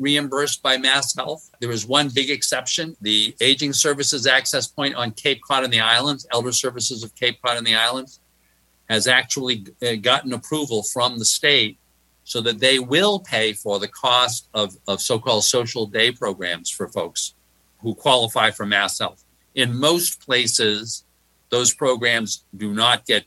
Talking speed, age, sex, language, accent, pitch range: 160 wpm, 50-69, male, English, American, 105-130 Hz